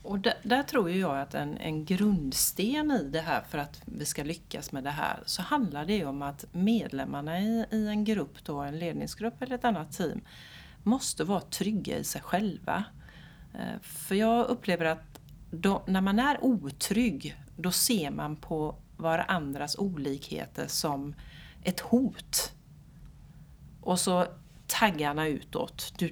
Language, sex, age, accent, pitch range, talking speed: Swedish, female, 40-59, native, 160-230 Hz, 150 wpm